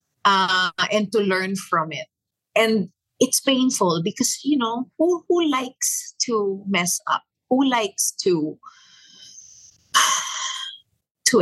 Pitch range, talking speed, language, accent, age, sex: 170-230 Hz, 115 wpm, English, Filipino, 50-69, female